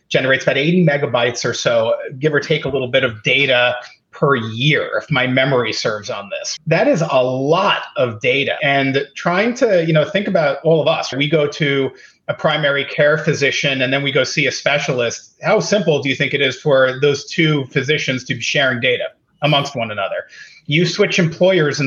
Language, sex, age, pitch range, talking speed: English, male, 30-49, 140-175 Hz, 205 wpm